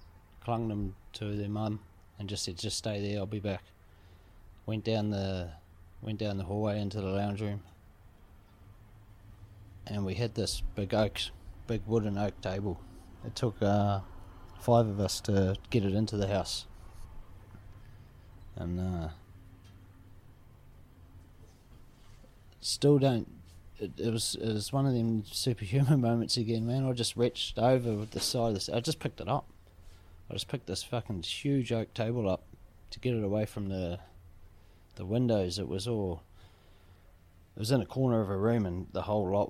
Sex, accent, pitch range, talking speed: male, Australian, 90-110 Hz, 165 wpm